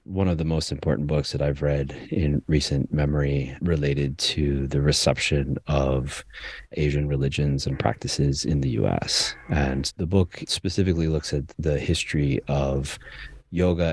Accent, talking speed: American, 145 wpm